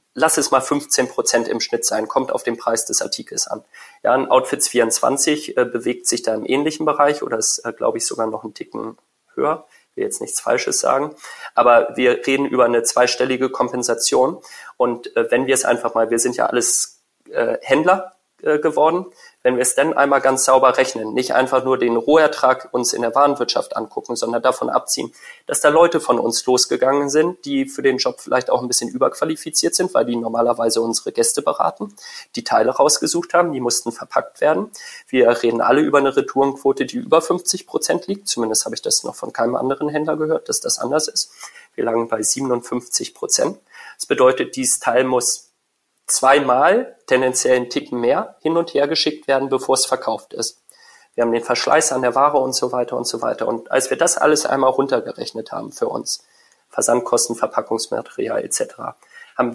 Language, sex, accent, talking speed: German, male, German, 190 wpm